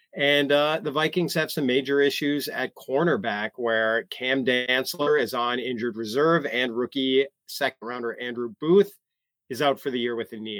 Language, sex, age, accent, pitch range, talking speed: English, male, 30-49, American, 120-150 Hz, 175 wpm